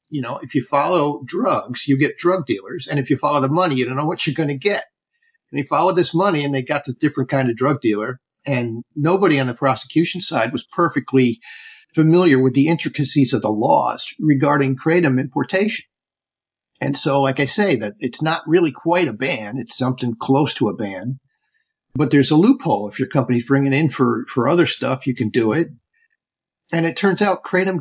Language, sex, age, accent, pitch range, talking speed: English, male, 50-69, American, 130-165 Hz, 205 wpm